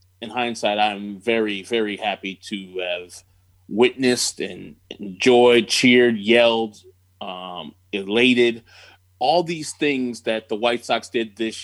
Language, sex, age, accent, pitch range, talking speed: English, male, 20-39, American, 95-130 Hz, 125 wpm